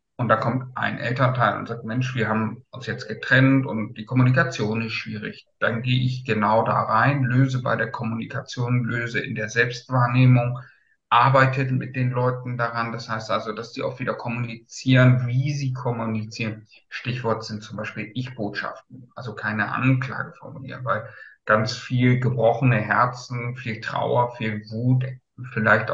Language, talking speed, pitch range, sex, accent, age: German, 155 wpm, 110-130 Hz, male, German, 50-69